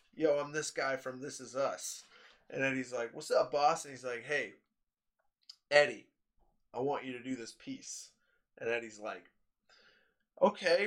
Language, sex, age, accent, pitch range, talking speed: English, male, 20-39, American, 150-230 Hz, 165 wpm